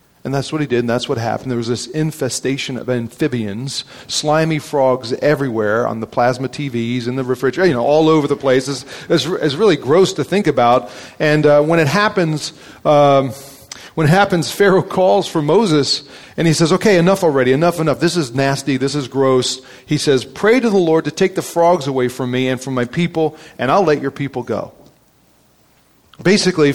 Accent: American